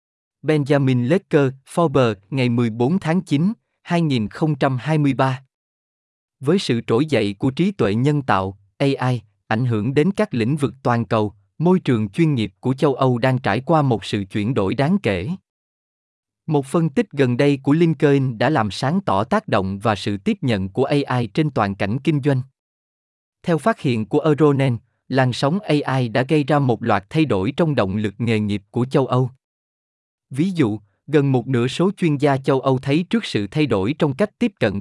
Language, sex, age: Vietnamese, male, 20-39